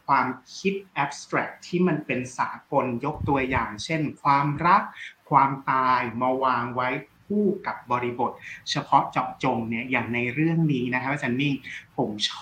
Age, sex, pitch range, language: 20-39, male, 125-160 Hz, Thai